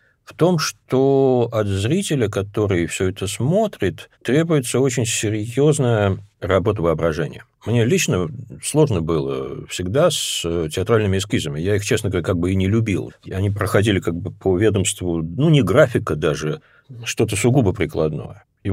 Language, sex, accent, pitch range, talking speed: Russian, male, native, 90-115 Hz, 145 wpm